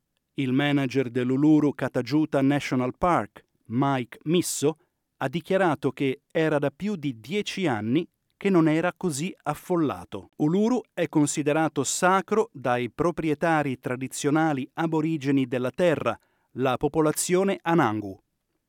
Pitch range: 130-165 Hz